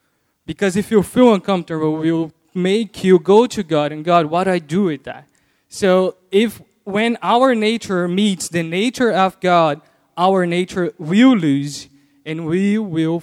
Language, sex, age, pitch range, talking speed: English, male, 20-39, 155-195 Hz, 170 wpm